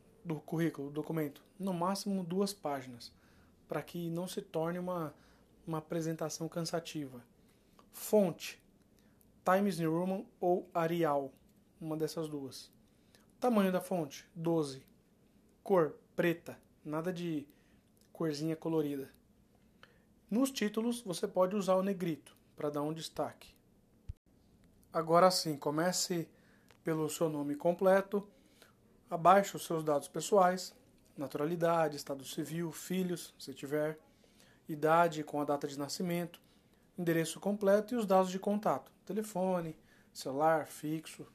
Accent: Brazilian